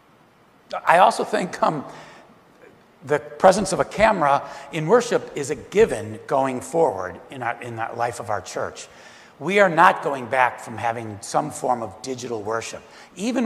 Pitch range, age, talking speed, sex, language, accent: 125-185 Hz, 60-79, 160 wpm, male, English, American